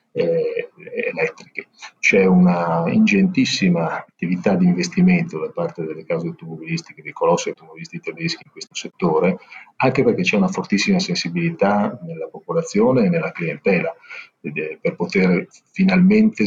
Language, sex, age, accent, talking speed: Italian, male, 40-59, native, 125 wpm